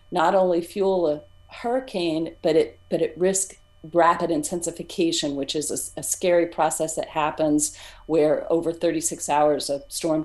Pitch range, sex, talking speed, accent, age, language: 155-175 Hz, female, 150 wpm, American, 40-59, English